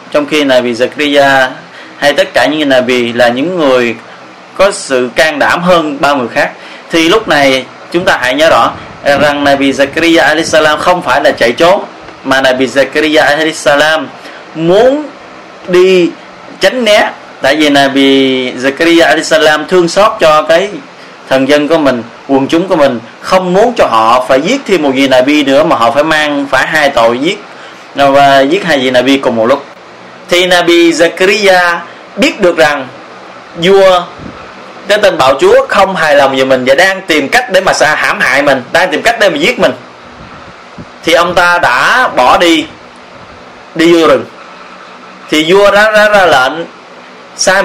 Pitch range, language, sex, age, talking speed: 135-185 Hz, Vietnamese, male, 20-39, 175 wpm